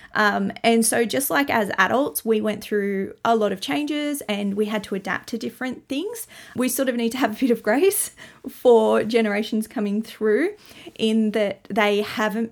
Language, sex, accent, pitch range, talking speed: English, female, Australian, 200-235 Hz, 190 wpm